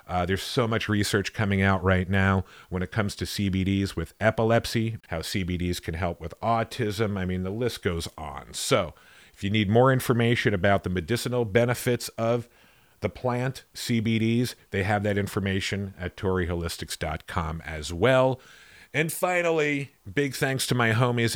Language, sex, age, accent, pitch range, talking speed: English, male, 40-59, American, 95-115 Hz, 160 wpm